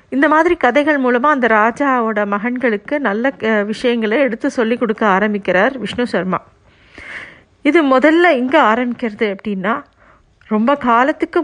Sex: female